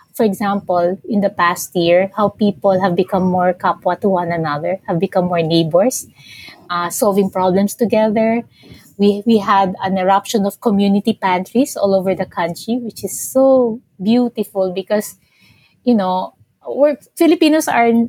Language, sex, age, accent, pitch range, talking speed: English, female, 20-39, Filipino, 180-210 Hz, 150 wpm